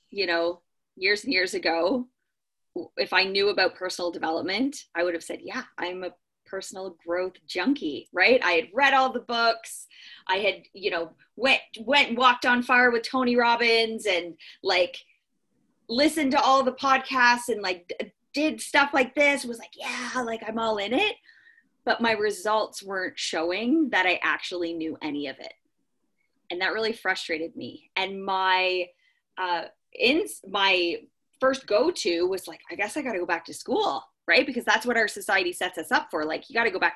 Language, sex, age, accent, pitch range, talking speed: English, female, 20-39, American, 185-260 Hz, 185 wpm